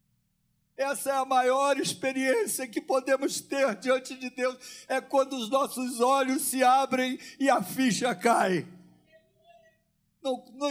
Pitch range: 175-255 Hz